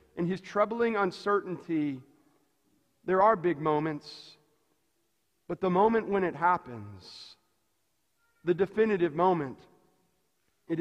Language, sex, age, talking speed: English, male, 40-59, 100 wpm